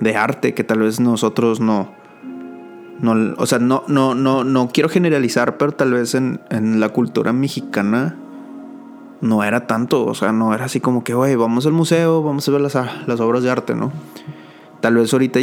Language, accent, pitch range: English, Mexican, 115-145 Hz